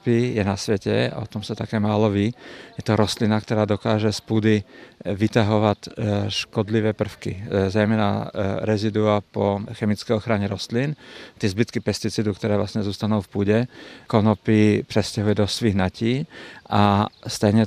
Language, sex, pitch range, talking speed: Czech, male, 105-115 Hz, 135 wpm